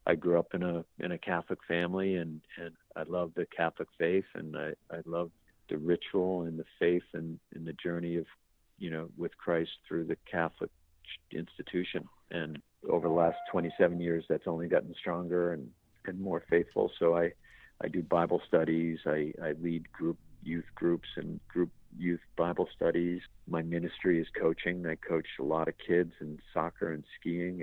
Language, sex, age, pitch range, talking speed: English, male, 50-69, 80-85 Hz, 180 wpm